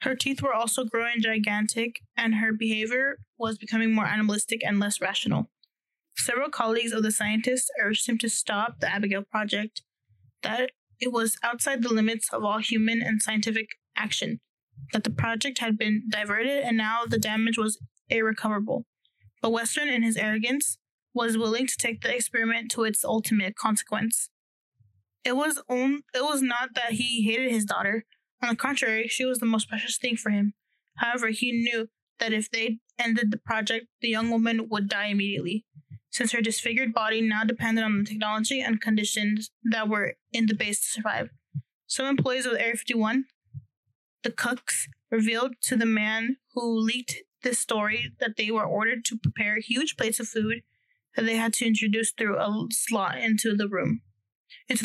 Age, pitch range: 10-29, 215-240 Hz